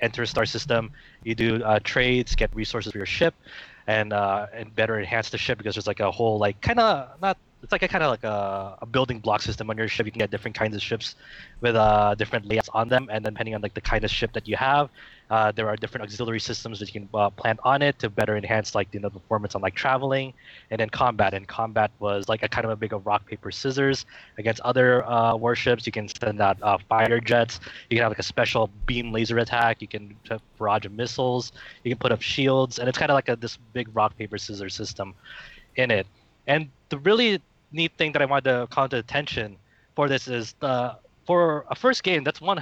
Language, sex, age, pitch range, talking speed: English, male, 20-39, 110-135 Hz, 240 wpm